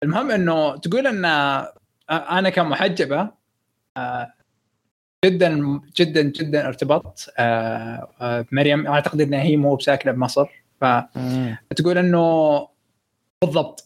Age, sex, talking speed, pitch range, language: 20-39, male, 85 wpm, 130-170 Hz, Arabic